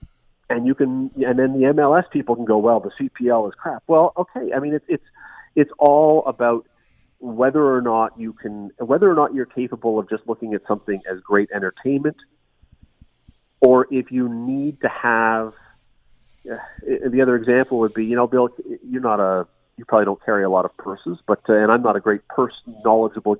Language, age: English, 40-59